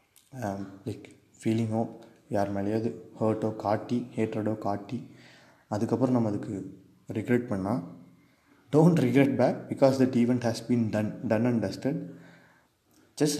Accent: native